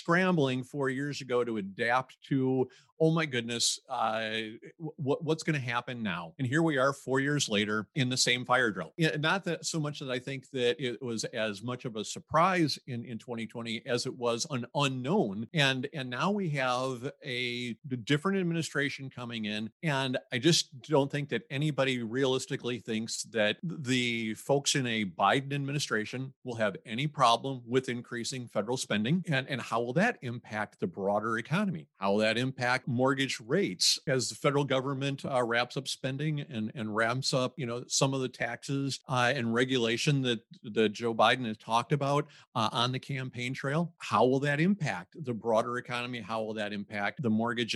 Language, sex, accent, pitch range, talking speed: English, male, American, 115-145 Hz, 185 wpm